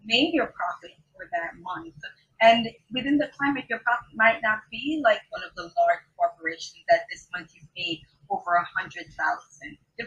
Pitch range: 175-235 Hz